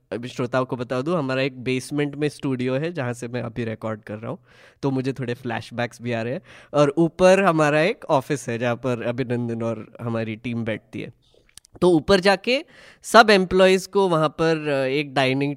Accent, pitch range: native, 120-155 Hz